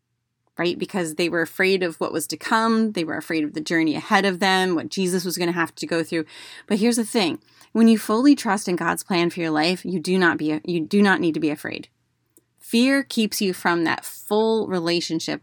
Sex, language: female, English